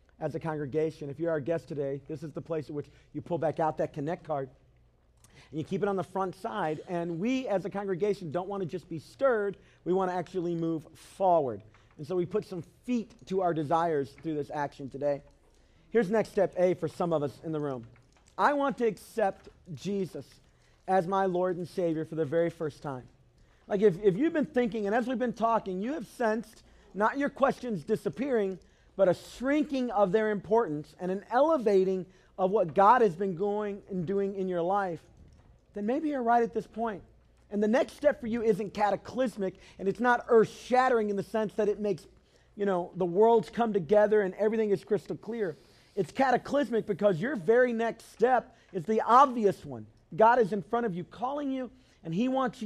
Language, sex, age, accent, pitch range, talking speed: English, male, 40-59, American, 165-225 Hz, 205 wpm